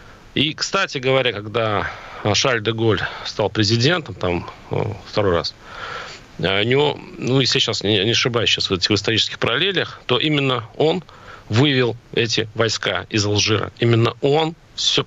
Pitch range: 115-140 Hz